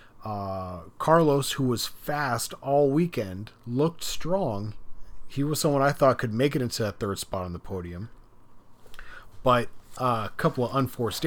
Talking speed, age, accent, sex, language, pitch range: 160 wpm, 40-59, American, male, English, 105-135 Hz